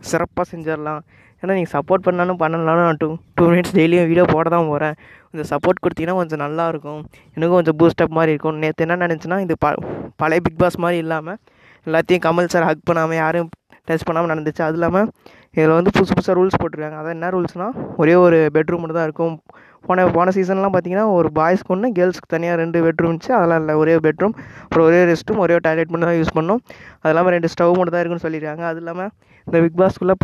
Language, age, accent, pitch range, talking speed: Tamil, 20-39, native, 150-175 Hz, 185 wpm